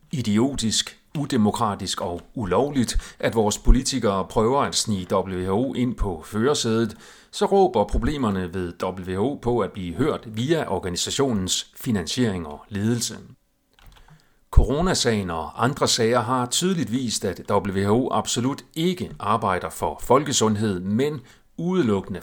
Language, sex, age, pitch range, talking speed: Danish, male, 40-59, 100-130 Hz, 120 wpm